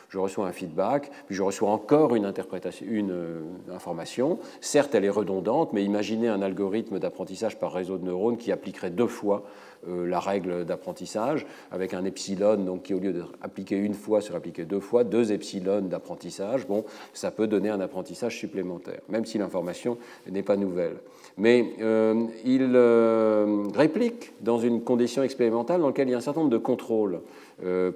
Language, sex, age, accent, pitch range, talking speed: French, male, 40-59, French, 100-125 Hz, 180 wpm